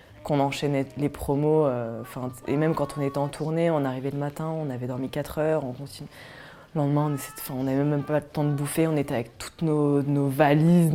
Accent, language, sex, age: French, French, female, 20-39